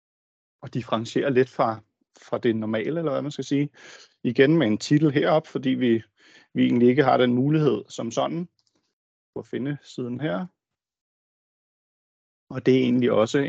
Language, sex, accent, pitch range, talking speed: Danish, male, native, 105-130 Hz, 165 wpm